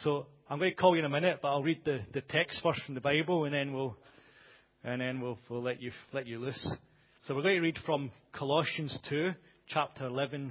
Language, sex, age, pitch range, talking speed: English, male, 40-59, 130-165 Hz, 235 wpm